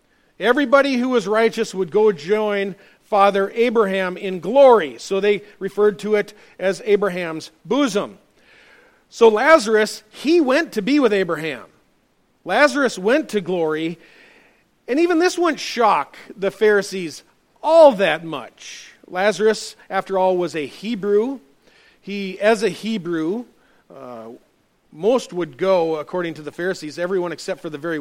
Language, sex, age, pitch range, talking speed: English, male, 40-59, 170-220 Hz, 135 wpm